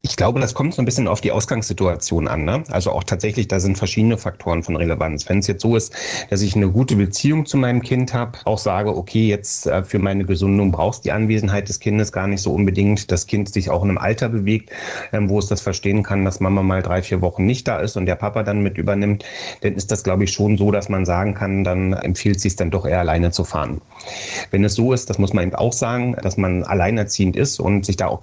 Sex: male